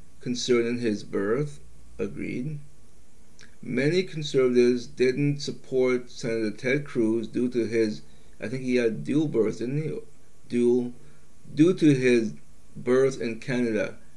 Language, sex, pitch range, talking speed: English, male, 80-130 Hz, 125 wpm